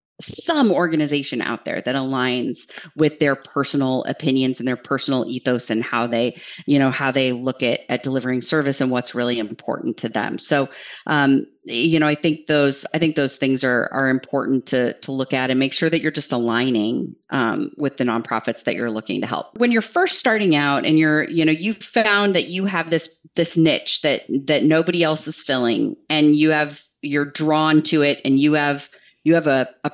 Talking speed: 205 wpm